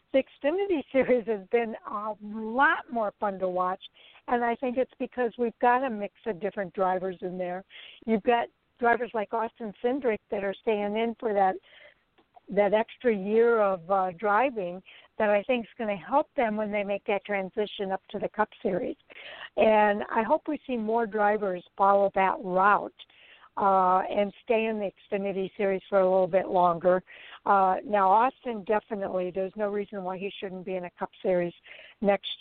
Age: 60-79